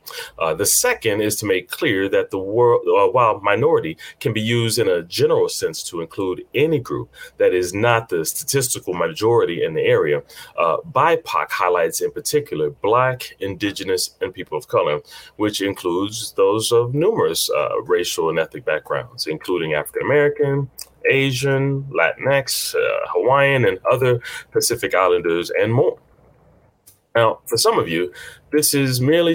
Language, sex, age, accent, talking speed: English, male, 30-49, American, 150 wpm